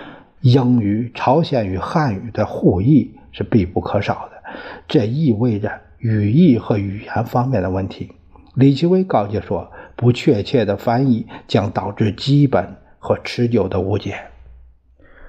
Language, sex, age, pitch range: Chinese, male, 50-69, 95-145 Hz